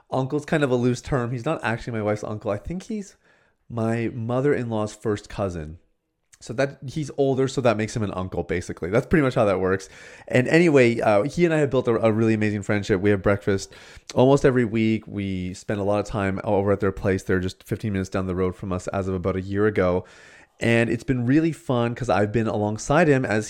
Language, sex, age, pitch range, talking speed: English, male, 30-49, 100-130 Hz, 230 wpm